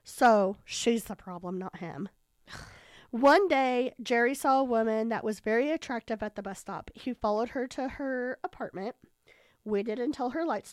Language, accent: English, American